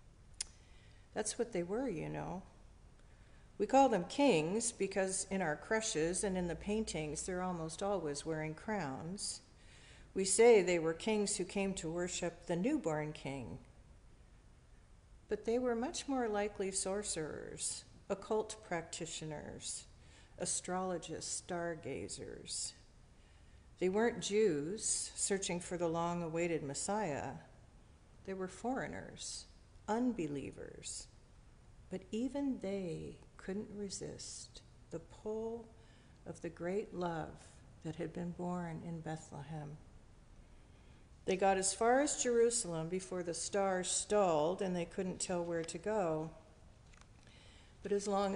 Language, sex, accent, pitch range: English, female, American, 155-205 Hz